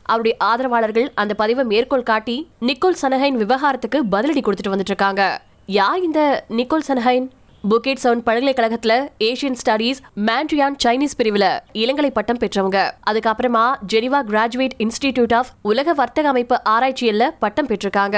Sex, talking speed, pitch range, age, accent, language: female, 35 wpm, 220-270 Hz, 20-39, native, Tamil